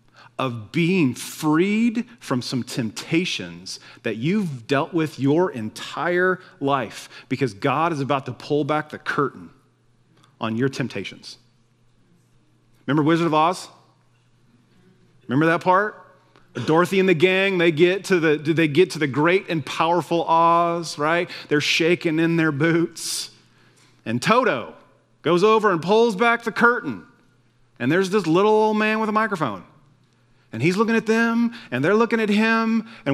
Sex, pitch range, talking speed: male, 130-215 Hz, 150 wpm